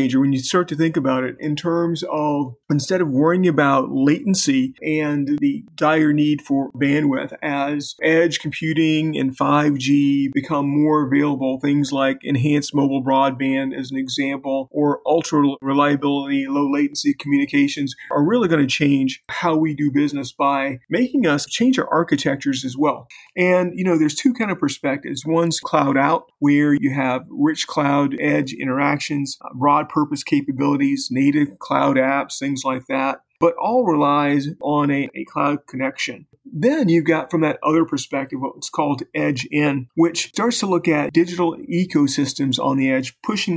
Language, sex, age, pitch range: English, male, 40-59, 140-165 Hz